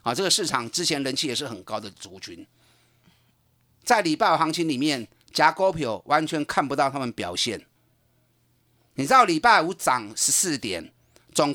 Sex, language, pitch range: male, Chinese, 125-195 Hz